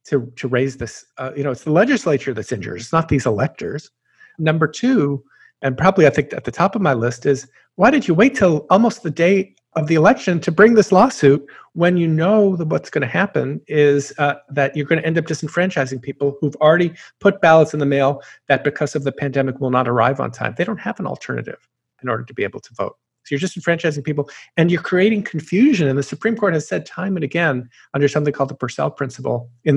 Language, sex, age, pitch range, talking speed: English, male, 50-69, 135-175 Hz, 235 wpm